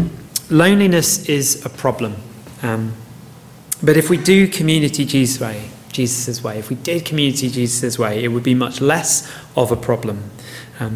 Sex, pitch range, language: male, 120-155 Hz, English